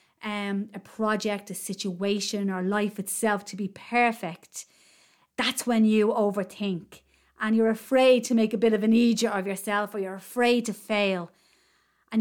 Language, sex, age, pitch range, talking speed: English, female, 30-49, 205-255 Hz, 160 wpm